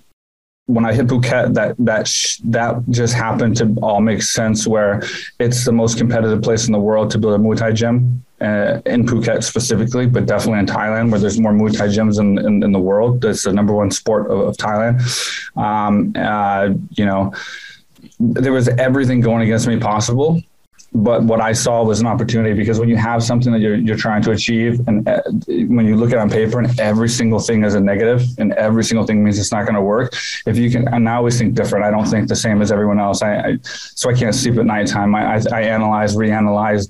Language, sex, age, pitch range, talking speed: English, male, 20-39, 105-115 Hz, 230 wpm